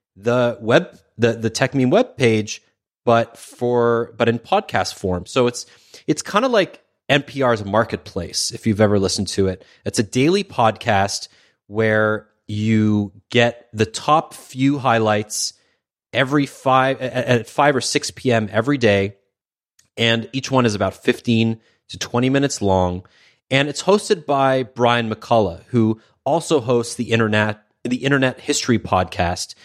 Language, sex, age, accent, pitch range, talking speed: English, male, 30-49, American, 105-125 Hz, 145 wpm